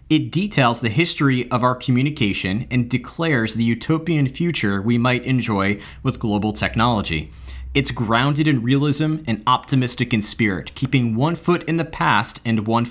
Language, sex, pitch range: English, male, 110-145 Hz